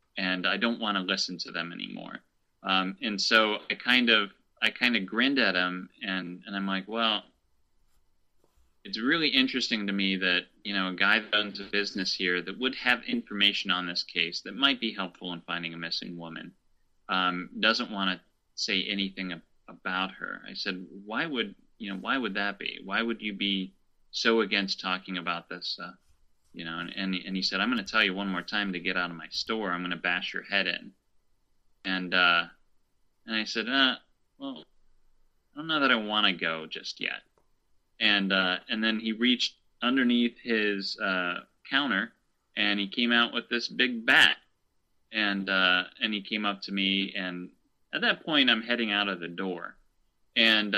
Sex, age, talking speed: male, 30-49, 195 wpm